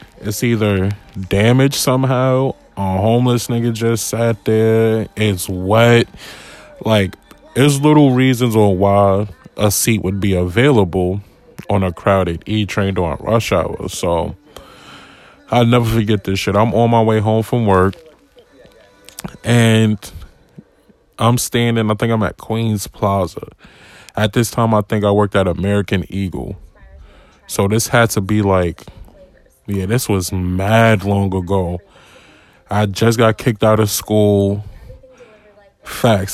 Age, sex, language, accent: 20-39, male, English, American